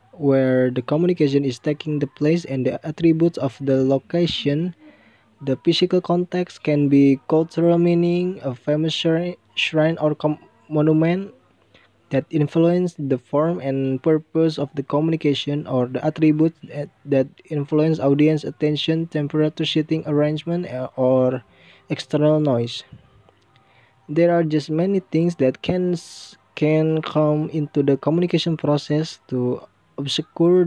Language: English